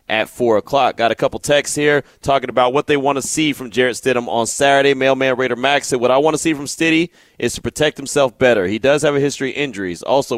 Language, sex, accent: English, male, American